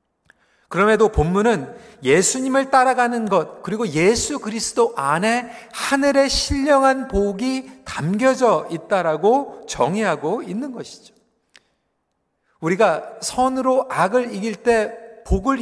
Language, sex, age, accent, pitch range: Korean, male, 40-59, native, 205-260 Hz